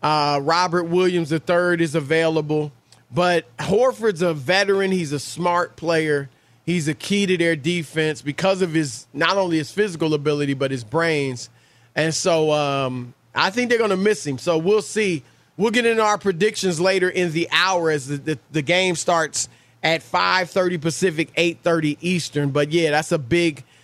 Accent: American